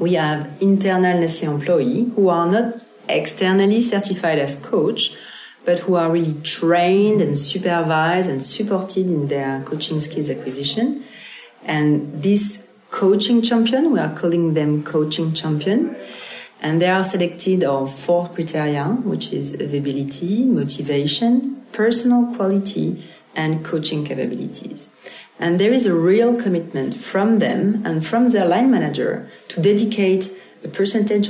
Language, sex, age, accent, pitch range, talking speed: English, female, 40-59, French, 150-210 Hz, 130 wpm